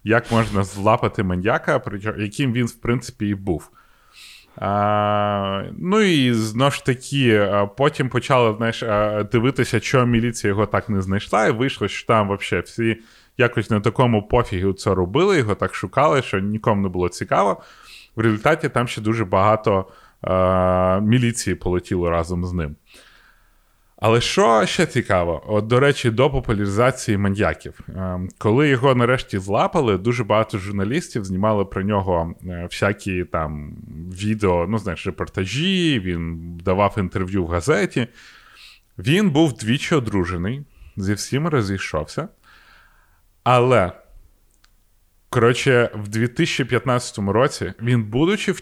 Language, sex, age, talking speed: Ukrainian, male, 20-39, 130 wpm